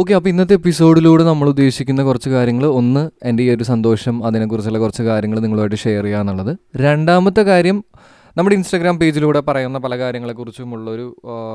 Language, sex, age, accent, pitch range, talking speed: Malayalam, male, 20-39, native, 115-155 Hz, 145 wpm